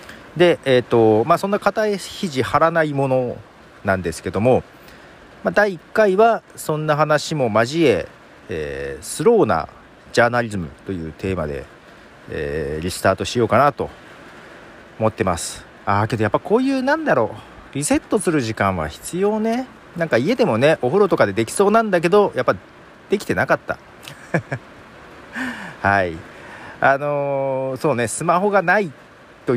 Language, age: Japanese, 40-59